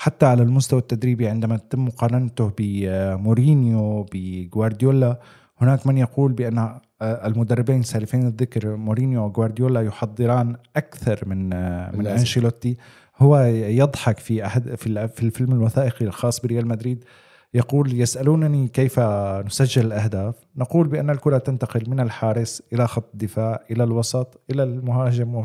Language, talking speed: Arabic, 120 wpm